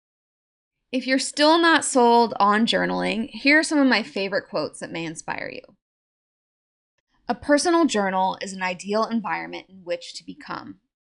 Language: English